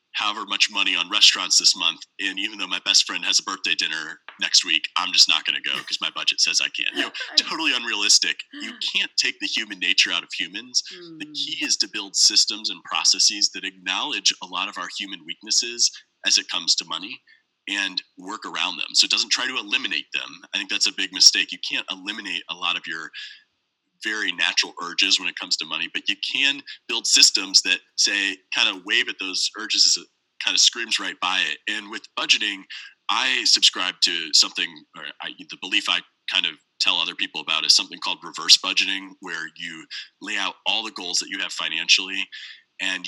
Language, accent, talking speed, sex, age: English, American, 210 wpm, male, 30-49